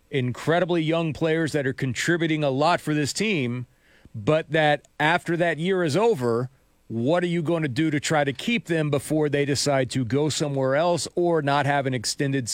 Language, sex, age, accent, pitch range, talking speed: English, male, 40-59, American, 145-185 Hz, 195 wpm